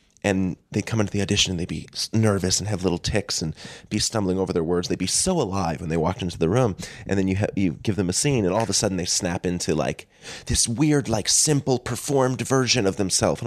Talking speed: 255 wpm